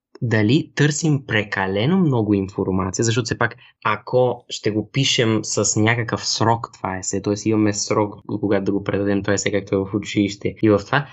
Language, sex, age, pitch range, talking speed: Bulgarian, male, 20-39, 100-130 Hz, 190 wpm